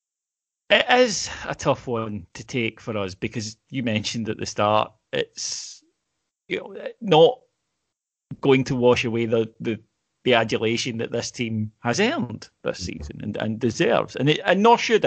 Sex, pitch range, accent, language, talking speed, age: male, 110-130 Hz, British, English, 165 wpm, 30-49